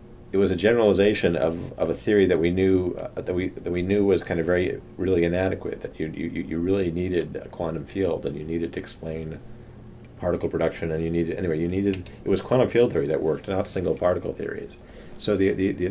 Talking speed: 225 wpm